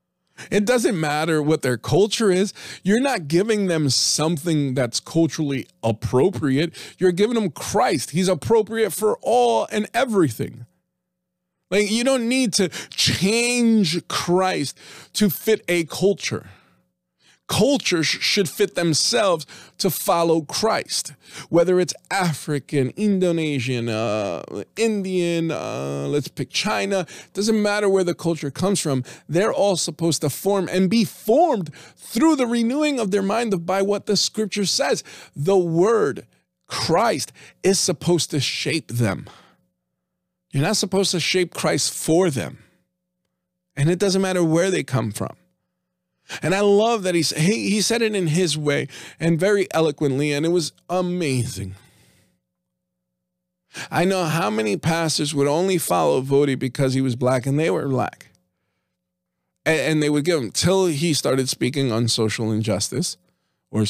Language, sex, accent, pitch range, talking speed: English, male, American, 135-190 Hz, 145 wpm